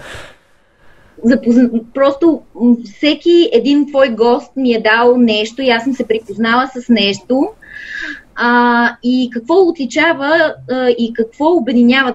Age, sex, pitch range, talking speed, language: 20-39, female, 235-280 Hz, 125 wpm, Bulgarian